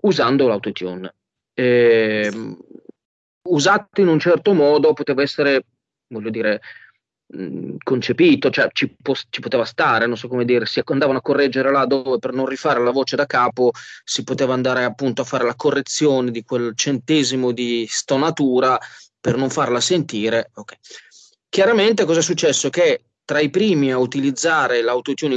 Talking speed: 140 wpm